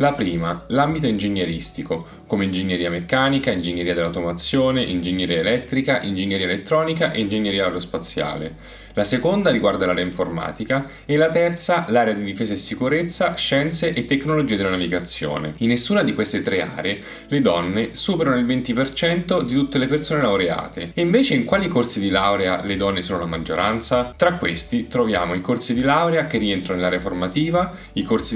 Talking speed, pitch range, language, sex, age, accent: 160 wpm, 95-155 Hz, Italian, male, 10-29, native